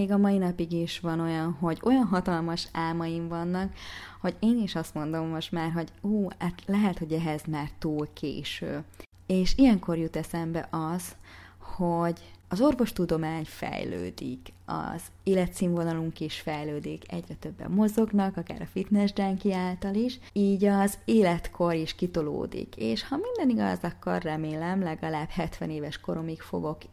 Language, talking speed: Hungarian, 145 wpm